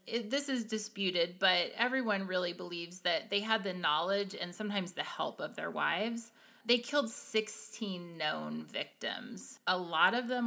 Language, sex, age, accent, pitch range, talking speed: English, female, 30-49, American, 180-225 Hz, 160 wpm